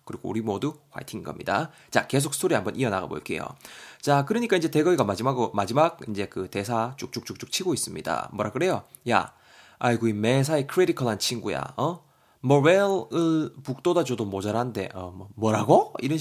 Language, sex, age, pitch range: Korean, male, 20-39, 110-155 Hz